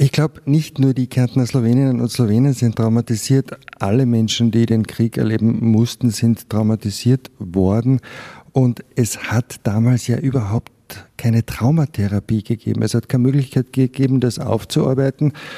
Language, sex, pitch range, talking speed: German, male, 115-130 Hz, 145 wpm